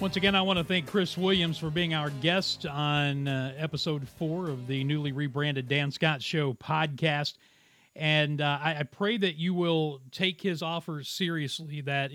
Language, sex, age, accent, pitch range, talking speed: English, male, 40-59, American, 140-165 Hz, 185 wpm